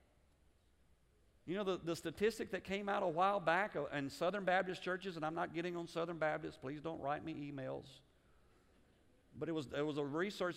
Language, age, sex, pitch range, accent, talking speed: English, 50-69, male, 165-220 Hz, American, 195 wpm